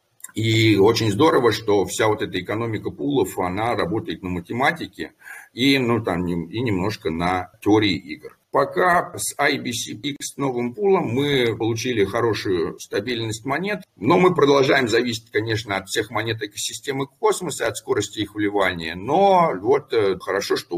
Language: Russian